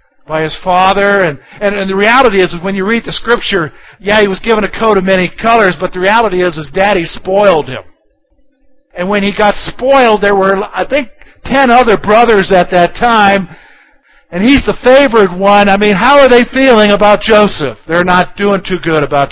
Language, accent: English, American